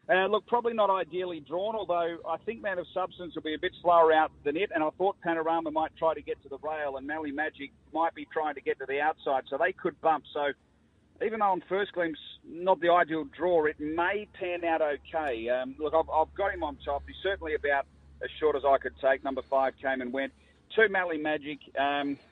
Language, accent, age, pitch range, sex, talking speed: English, Australian, 40-59, 135-170 Hz, male, 235 wpm